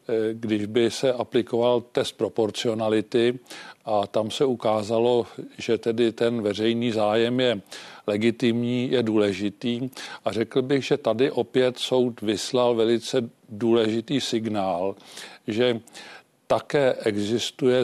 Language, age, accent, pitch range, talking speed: Czech, 50-69, native, 110-125 Hz, 110 wpm